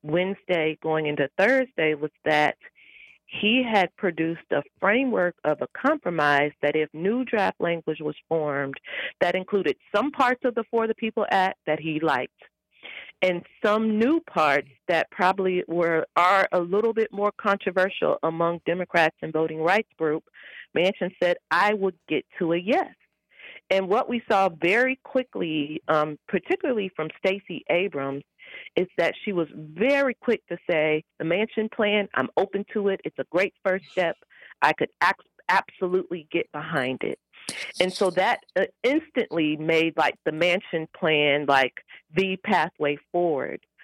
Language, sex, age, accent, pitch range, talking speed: English, female, 40-59, American, 155-205 Hz, 150 wpm